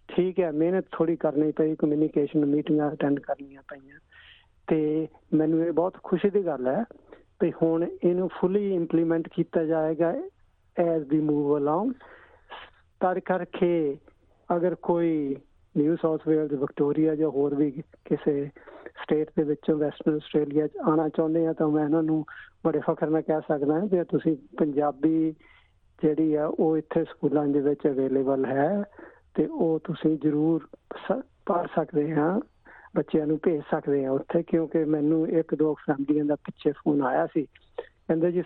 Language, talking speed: Punjabi, 150 wpm